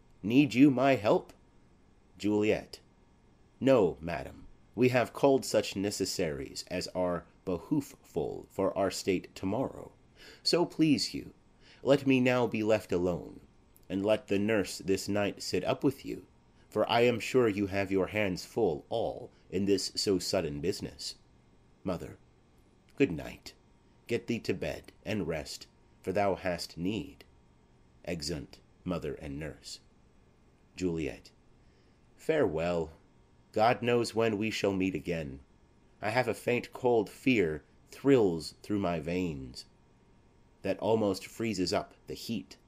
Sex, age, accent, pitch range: male, 30-49, American, 75-115 Hz